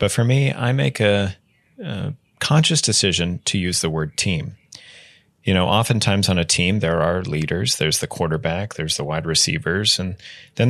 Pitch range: 90-120 Hz